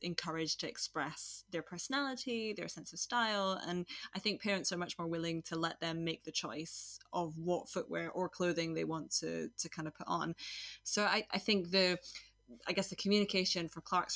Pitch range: 160-180 Hz